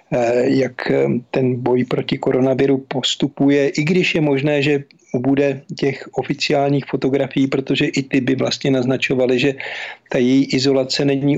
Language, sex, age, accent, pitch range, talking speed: Czech, male, 50-69, native, 130-145 Hz, 135 wpm